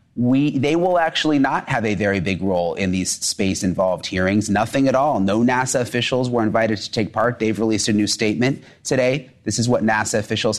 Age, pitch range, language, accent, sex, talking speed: 30-49, 105-125 Hz, English, American, male, 200 wpm